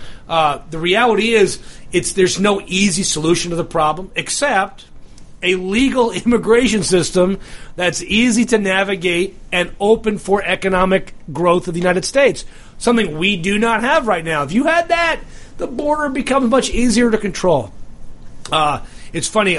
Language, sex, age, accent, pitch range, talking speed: English, male, 40-59, American, 165-220 Hz, 155 wpm